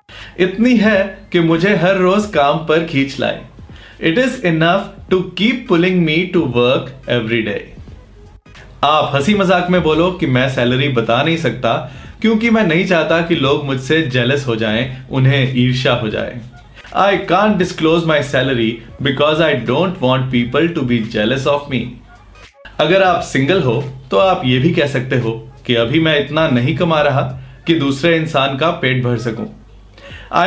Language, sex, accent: English, male, Indian